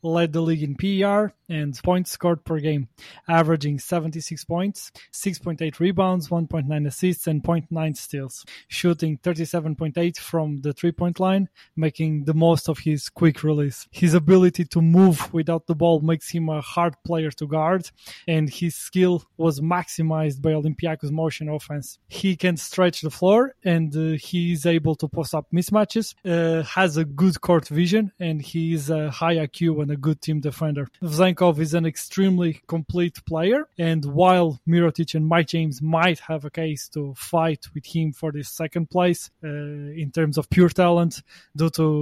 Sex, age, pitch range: male, 20-39, 155-170 Hz